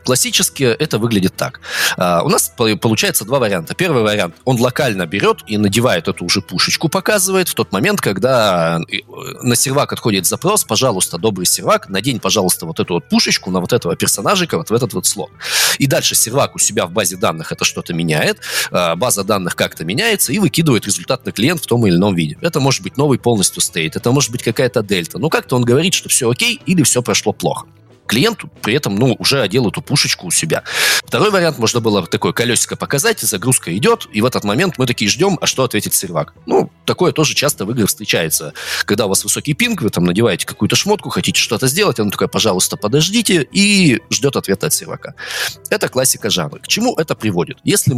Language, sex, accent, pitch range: Russian, male, native, 100-155 Hz